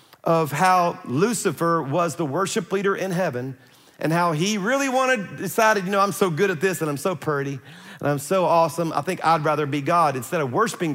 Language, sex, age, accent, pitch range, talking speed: English, male, 40-59, American, 155-190 Hz, 215 wpm